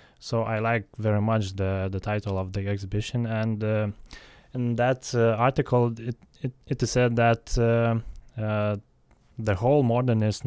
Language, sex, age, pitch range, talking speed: English, male, 20-39, 100-115 Hz, 155 wpm